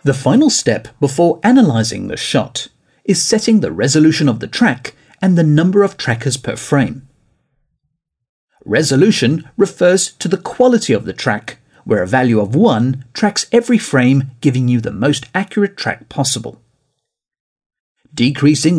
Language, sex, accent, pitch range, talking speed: English, male, British, 125-190 Hz, 145 wpm